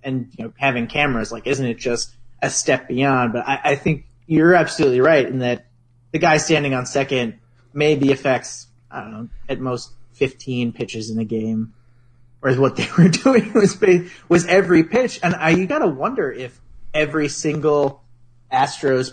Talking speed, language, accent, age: 180 wpm, English, American, 30-49